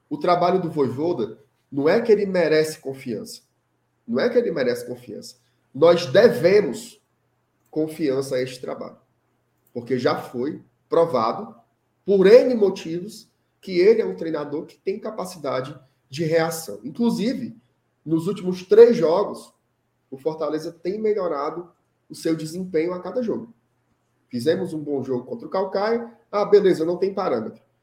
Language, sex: Portuguese, male